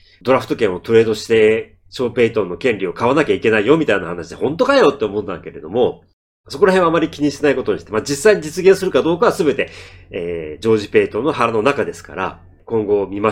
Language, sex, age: Japanese, male, 40-59